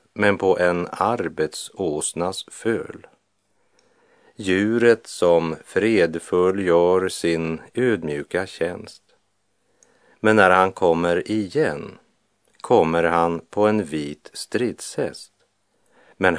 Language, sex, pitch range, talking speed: Swedish, male, 85-100 Hz, 90 wpm